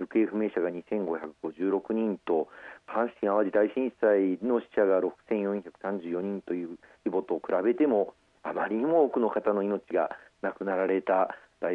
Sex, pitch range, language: male, 95-110 Hz, Japanese